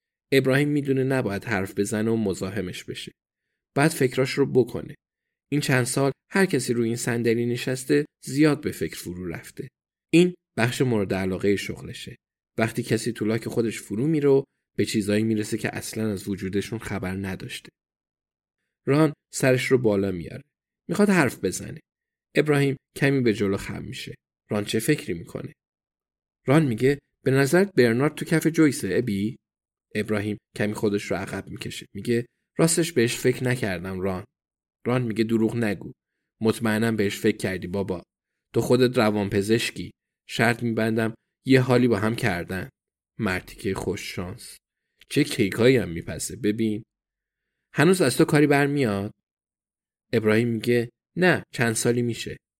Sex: male